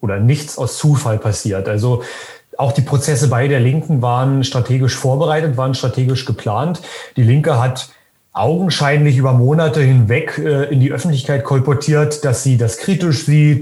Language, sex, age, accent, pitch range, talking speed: German, male, 30-49, German, 120-150 Hz, 150 wpm